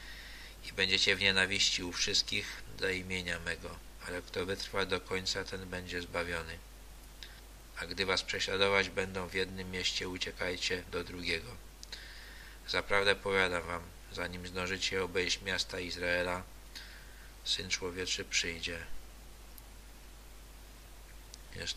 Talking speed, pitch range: 110 wpm, 85-95 Hz